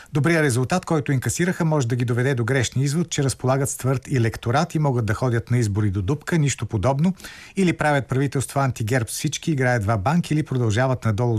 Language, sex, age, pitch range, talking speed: Bulgarian, male, 50-69, 115-145 Hz, 190 wpm